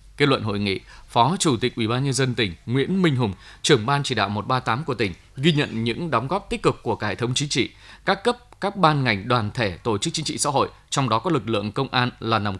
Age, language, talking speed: 20-39, Vietnamese, 270 wpm